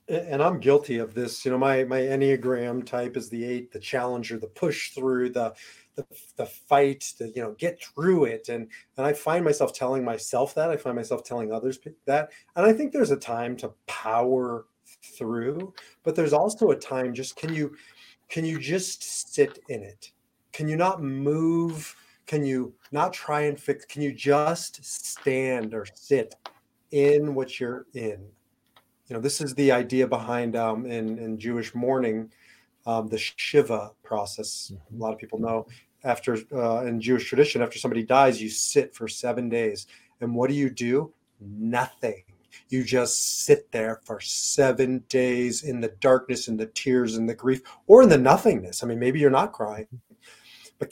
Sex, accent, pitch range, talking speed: male, American, 115-145 Hz, 180 wpm